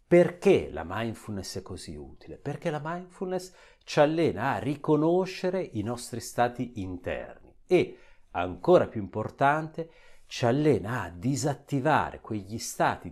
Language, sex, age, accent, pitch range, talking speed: Italian, male, 50-69, native, 105-140 Hz, 125 wpm